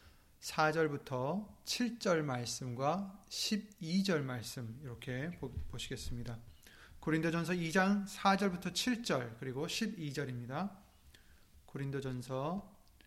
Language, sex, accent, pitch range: Korean, male, native, 130-175 Hz